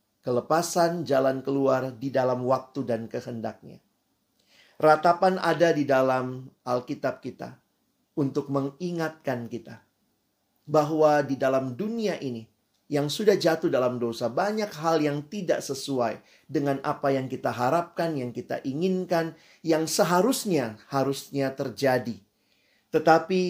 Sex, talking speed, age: male, 115 wpm, 40-59